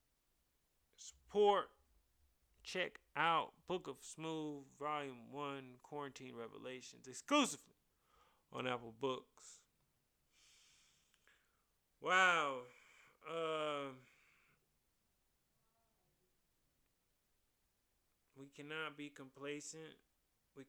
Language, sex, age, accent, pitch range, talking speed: English, male, 30-49, American, 110-140 Hz, 60 wpm